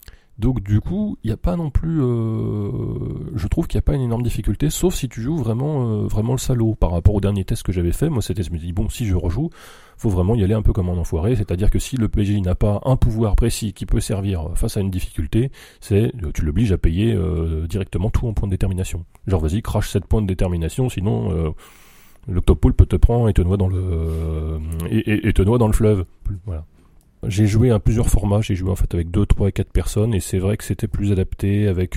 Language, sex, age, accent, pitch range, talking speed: French, male, 30-49, French, 95-110 Hz, 250 wpm